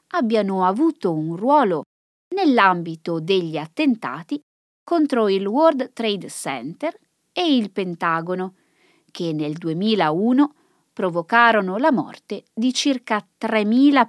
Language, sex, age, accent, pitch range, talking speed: Italian, female, 20-39, native, 170-275 Hz, 100 wpm